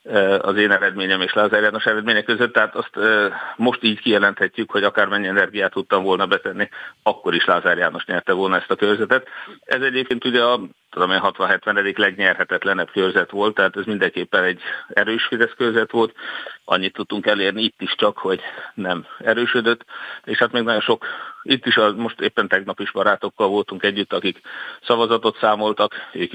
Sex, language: male, Hungarian